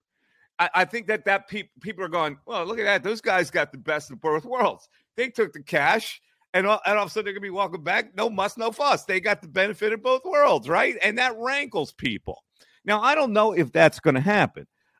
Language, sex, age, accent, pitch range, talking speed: English, male, 40-59, American, 135-200 Hz, 250 wpm